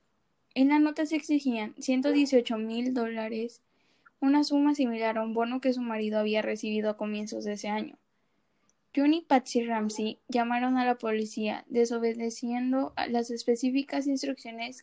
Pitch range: 220-255 Hz